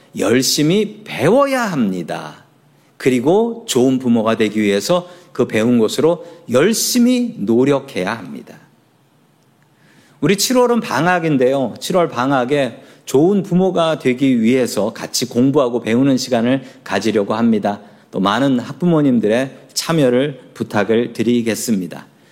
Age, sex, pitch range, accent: 40-59, male, 125-205 Hz, native